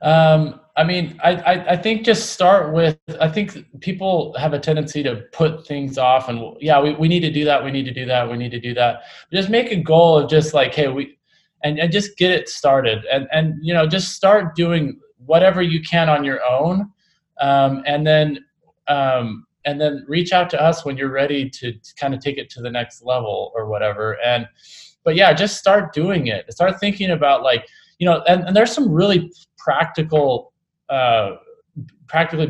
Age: 20-39